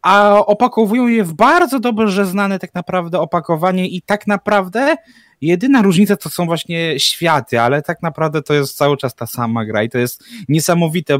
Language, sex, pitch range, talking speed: Polish, male, 155-210 Hz, 175 wpm